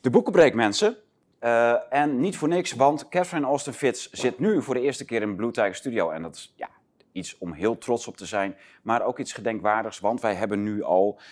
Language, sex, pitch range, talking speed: Dutch, male, 95-135 Hz, 230 wpm